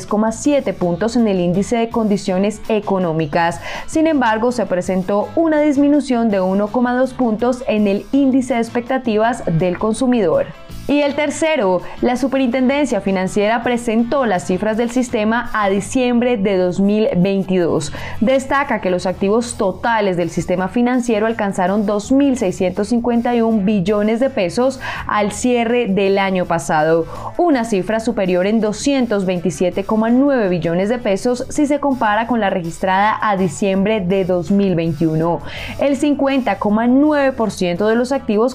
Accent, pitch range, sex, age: Colombian, 190-255 Hz, female, 20-39